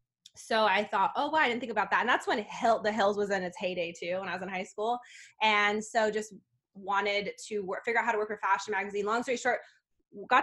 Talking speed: 260 wpm